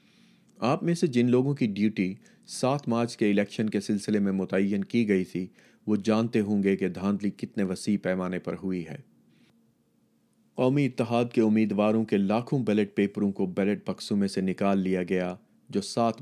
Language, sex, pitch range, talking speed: Urdu, male, 95-110 Hz, 180 wpm